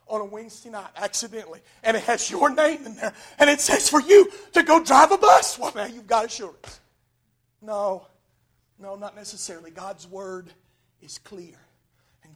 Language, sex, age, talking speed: English, male, 40-59, 175 wpm